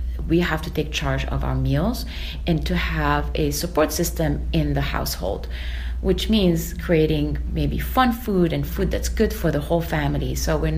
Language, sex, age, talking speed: English, female, 30-49, 185 wpm